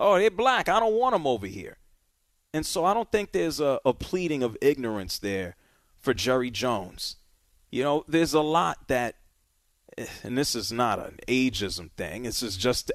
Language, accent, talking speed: English, American, 185 wpm